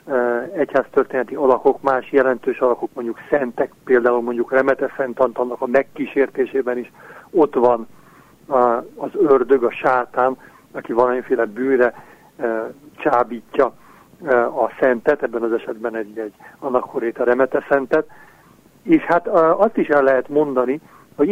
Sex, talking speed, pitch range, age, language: male, 115 wpm, 125-160 Hz, 60-79, Hungarian